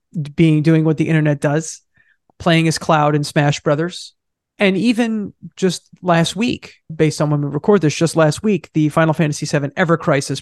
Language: English